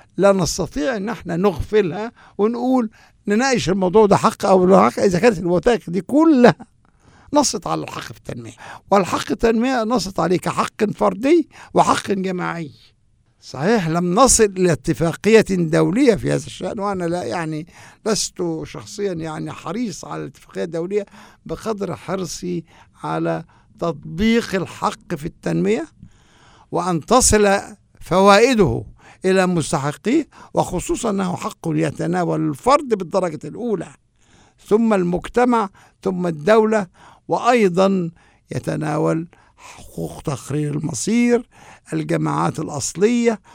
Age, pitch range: 60-79, 155-215 Hz